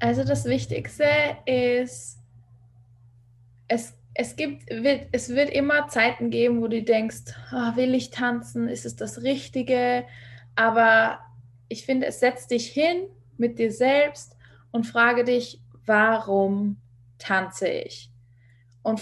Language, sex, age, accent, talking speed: English, female, 20-39, German, 125 wpm